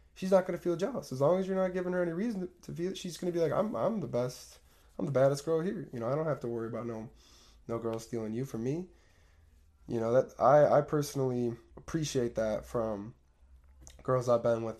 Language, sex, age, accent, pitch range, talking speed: English, male, 20-39, American, 95-130 Hz, 230 wpm